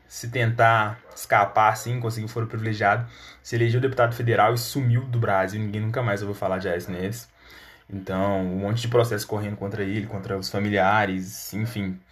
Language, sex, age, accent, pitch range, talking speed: Portuguese, male, 20-39, Brazilian, 105-130 Hz, 180 wpm